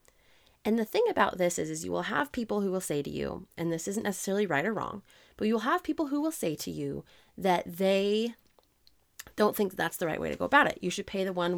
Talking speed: 255 wpm